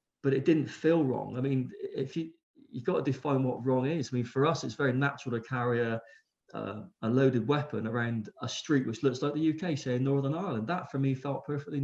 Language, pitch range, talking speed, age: English, 120-145 Hz, 245 wpm, 20-39